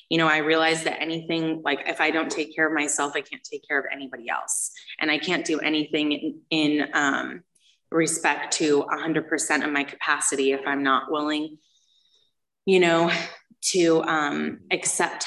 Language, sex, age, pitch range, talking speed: English, female, 20-39, 145-165 Hz, 175 wpm